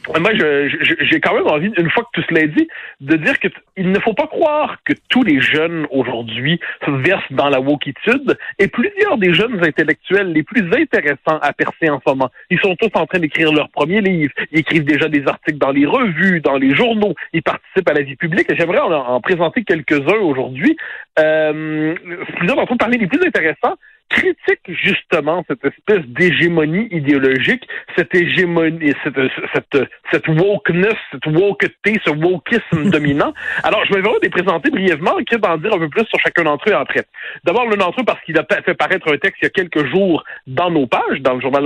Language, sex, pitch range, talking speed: French, male, 150-210 Hz, 210 wpm